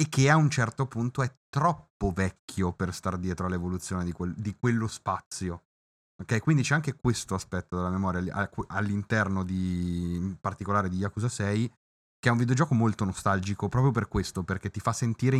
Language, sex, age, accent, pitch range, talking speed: Italian, male, 30-49, native, 95-115 Hz, 180 wpm